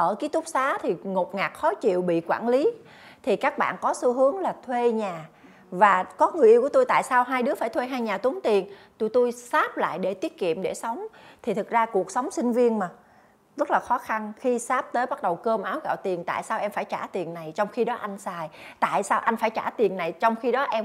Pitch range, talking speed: 205-280 Hz, 260 wpm